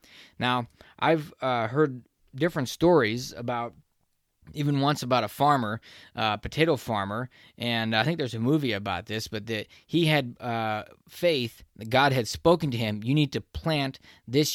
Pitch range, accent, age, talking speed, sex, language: 110-140 Hz, American, 20-39, 165 wpm, male, English